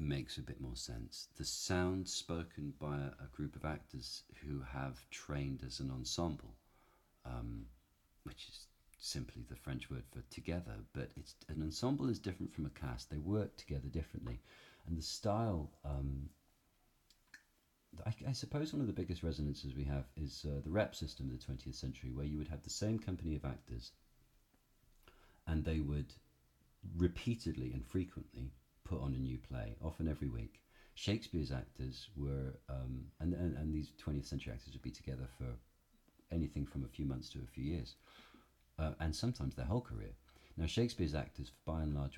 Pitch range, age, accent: 70-90 Hz, 40-59, British